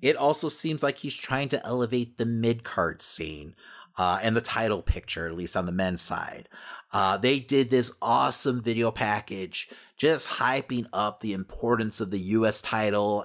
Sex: male